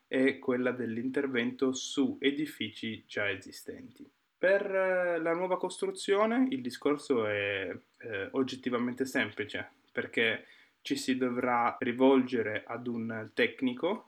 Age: 20-39